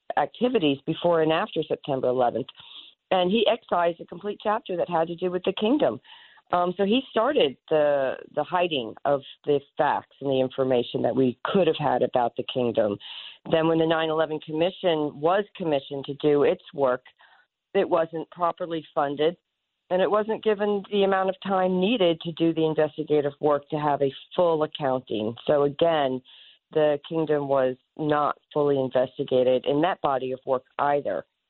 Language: English